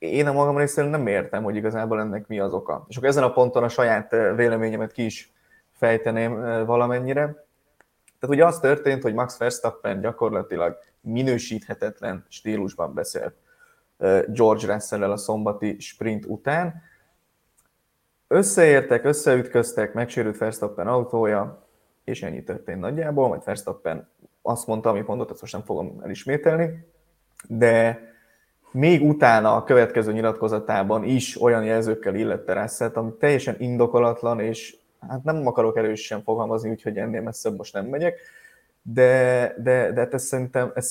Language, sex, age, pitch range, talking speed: Hungarian, male, 20-39, 110-150 Hz, 135 wpm